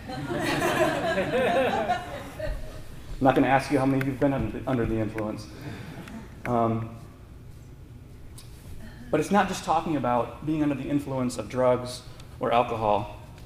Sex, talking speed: male, 135 wpm